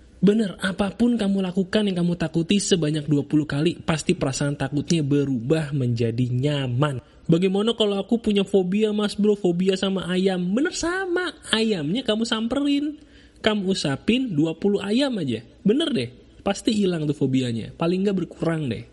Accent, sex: Indonesian, male